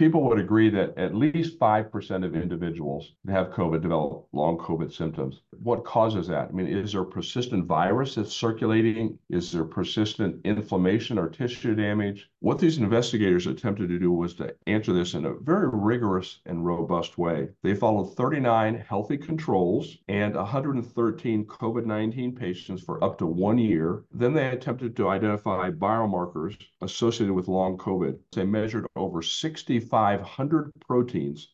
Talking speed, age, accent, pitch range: 155 wpm, 50-69, American, 95-120 Hz